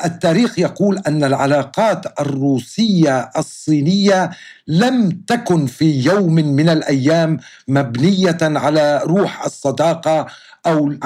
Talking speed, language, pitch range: 100 wpm, Arabic, 150-180 Hz